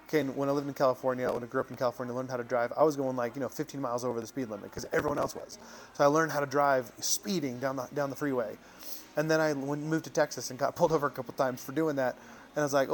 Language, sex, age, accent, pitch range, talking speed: English, male, 20-39, American, 130-160 Hz, 295 wpm